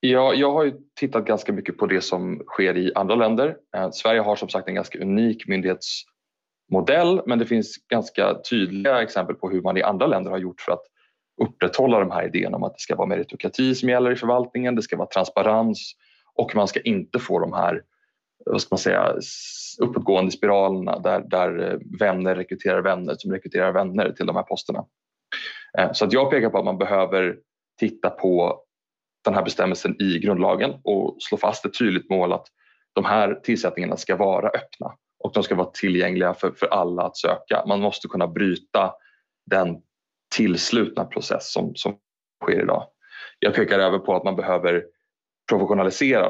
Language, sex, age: Swedish, male, 30-49